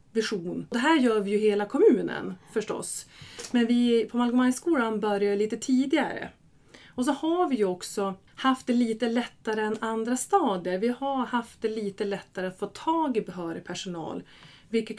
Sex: female